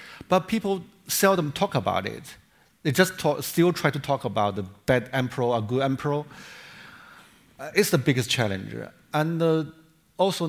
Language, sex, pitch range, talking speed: English, male, 125-175 Hz, 160 wpm